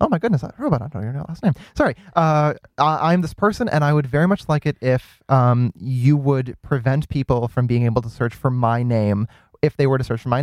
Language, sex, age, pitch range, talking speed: English, male, 20-39, 115-140 Hz, 260 wpm